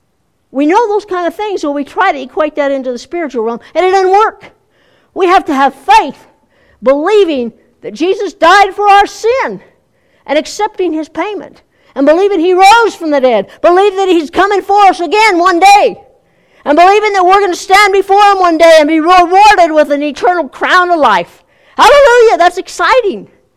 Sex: female